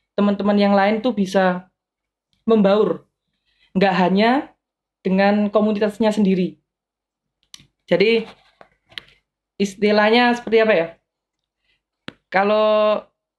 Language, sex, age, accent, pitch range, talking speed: Indonesian, female, 20-39, native, 185-225 Hz, 75 wpm